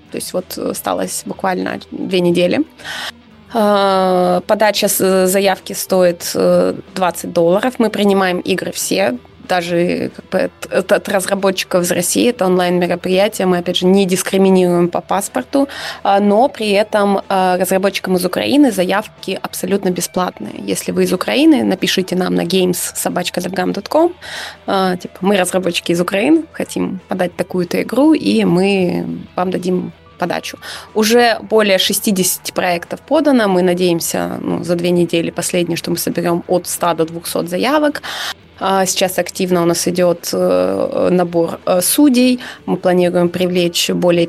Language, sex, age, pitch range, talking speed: Russian, female, 20-39, 180-215 Hz, 125 wpm